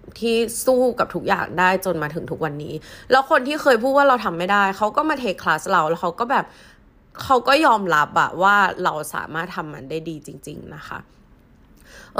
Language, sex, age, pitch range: Thai, female, 20-39, 160-225 Hz